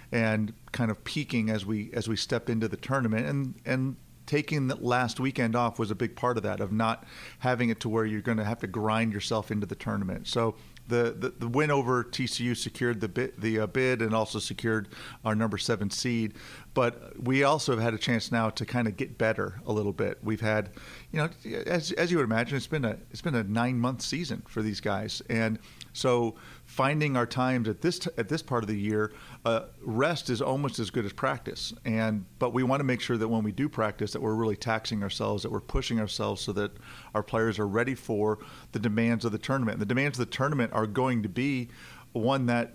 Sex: male